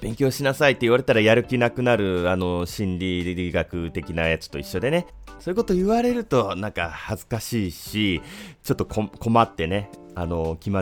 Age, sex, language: 30-49, male, Japanese